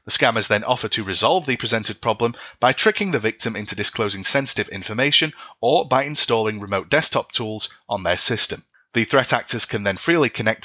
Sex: male